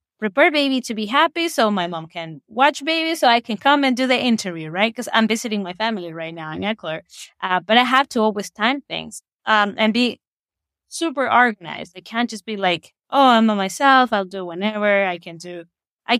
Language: English